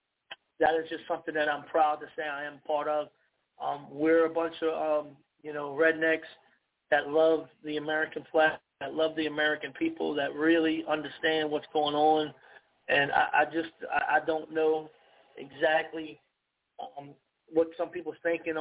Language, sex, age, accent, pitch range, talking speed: English, male, 40-59, American, 145-160 Hz, 165 wpm